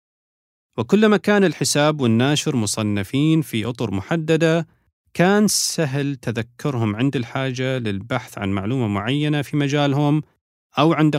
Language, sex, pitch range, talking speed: Arabic, male, 110-155 Hz, 115 wpm